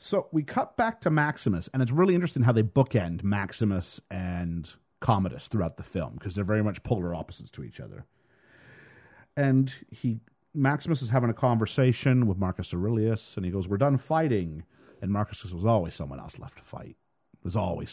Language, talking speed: English, 185 wpm